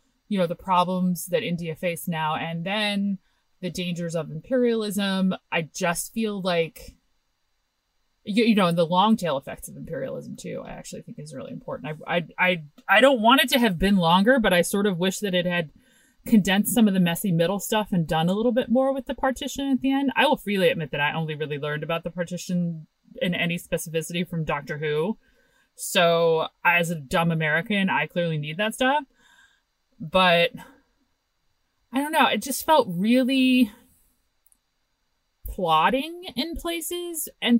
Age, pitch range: 30-49, 175-240 Hz